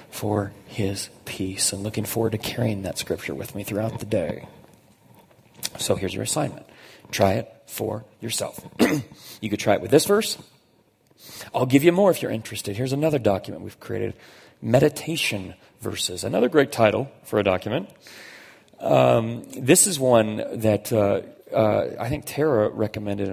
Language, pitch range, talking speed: English, 100-115 Hz, 155 wpm